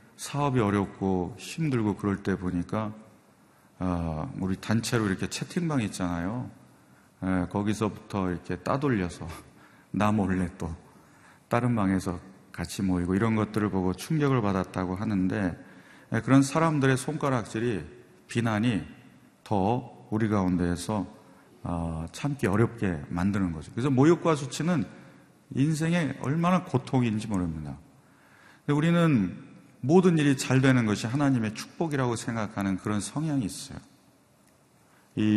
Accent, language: native, Korean